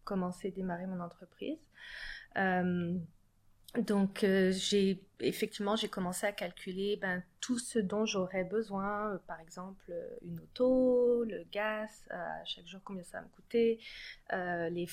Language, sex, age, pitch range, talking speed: French, female, 30-49, 185-220 Hz, 150 wpm